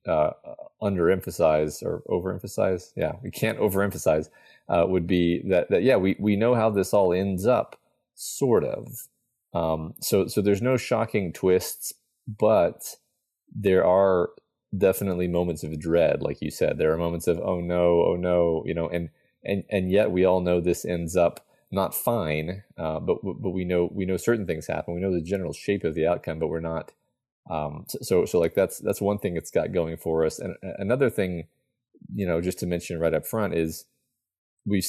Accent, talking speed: American, 190 wpm